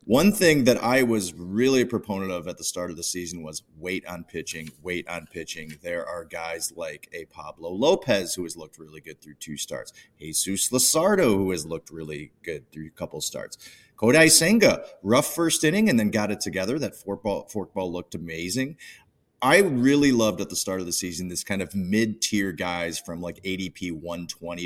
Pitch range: 85-110 Hz